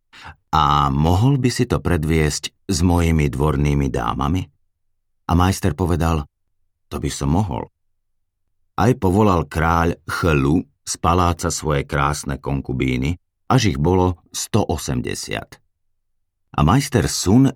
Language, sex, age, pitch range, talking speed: Slovak, male, 50-69, 75-95 Hz, 115 wpm